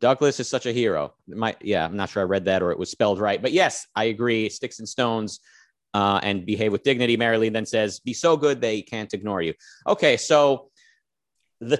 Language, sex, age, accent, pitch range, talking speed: English, male, 30-49, American, 115-140 Hz, 220 wpm